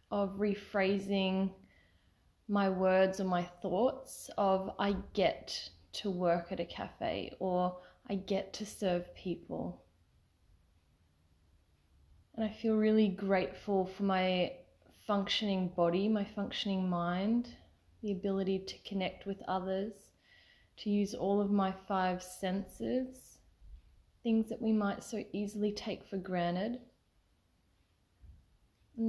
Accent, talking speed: Australian, 115 wpm